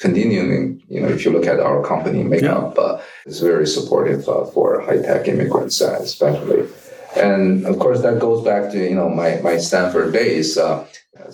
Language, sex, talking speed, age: English, male, 185 wpm, 40-59